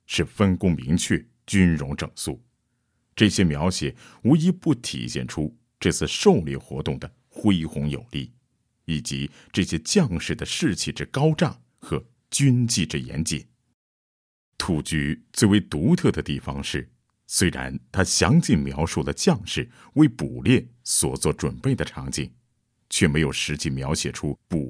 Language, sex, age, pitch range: Chinese, male, 50-69, 70-110 Hz